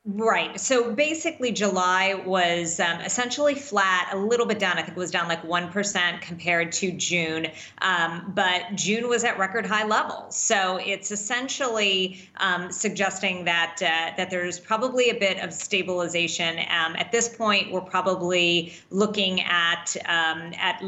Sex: female